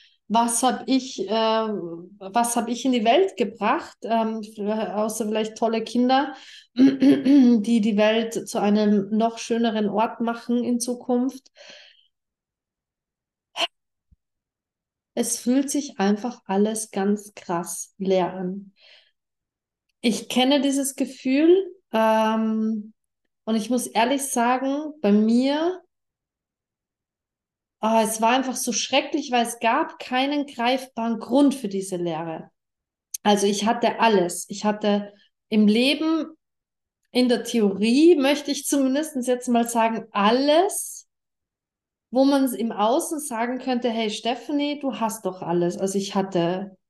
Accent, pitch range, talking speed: German, 210-265 Hz, 120 wpm